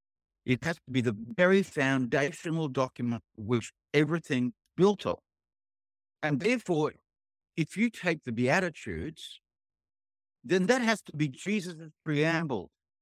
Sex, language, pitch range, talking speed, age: male, English, 110-160 Hz, 125 wpm, 60-79